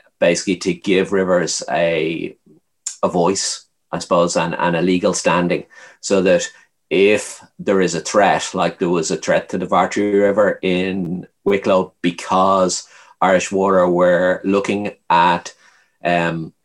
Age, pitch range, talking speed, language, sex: 30-49, 85-100 Hz, 140 wpm, English, male